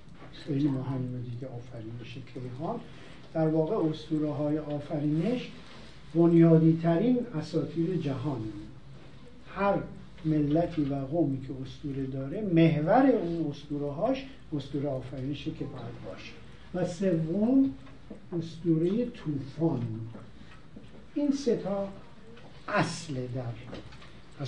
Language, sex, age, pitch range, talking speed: Persian, male, 50-69, 135-180 Hz, 95 wpm